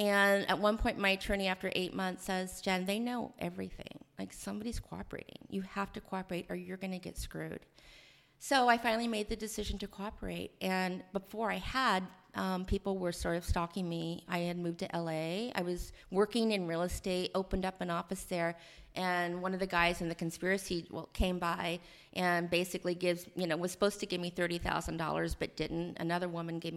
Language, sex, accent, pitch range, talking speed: English, female, American, 160-190 Hz, 200 wpm